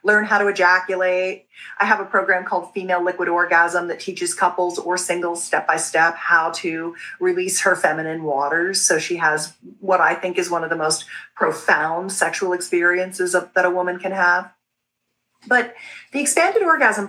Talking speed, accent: 165 wpm, American